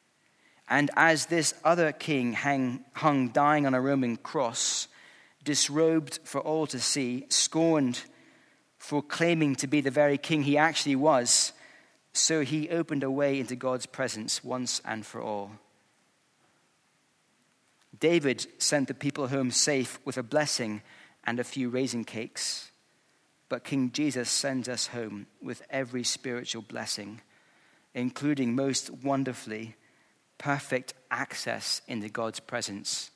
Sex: male